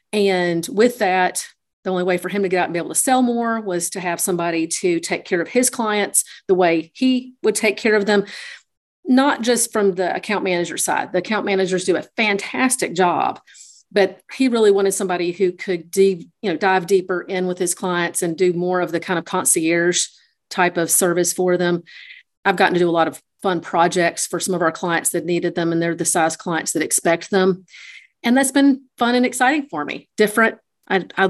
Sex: female